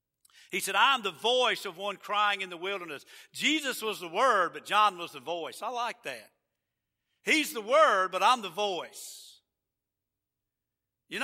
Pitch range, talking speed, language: 170-225 Hz, 165 wpm, English